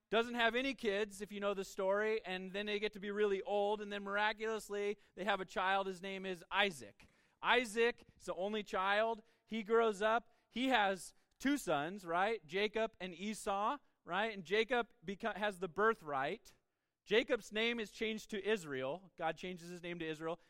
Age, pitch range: 30-49, 165-210 Hz